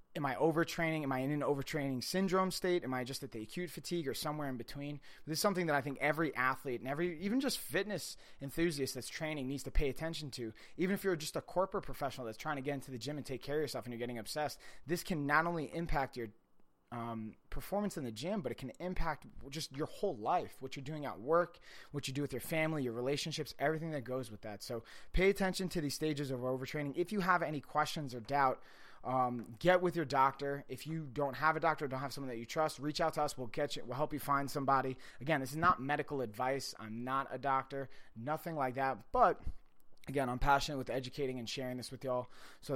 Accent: American